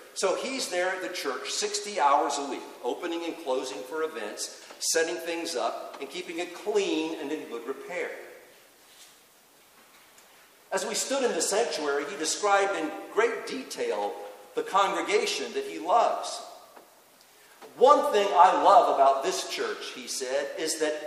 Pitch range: 165-255 Hz